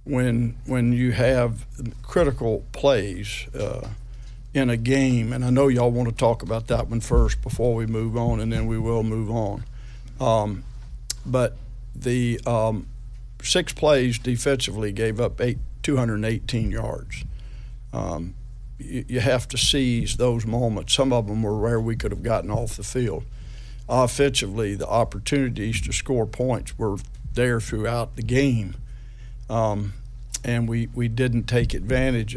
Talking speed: 150 wpm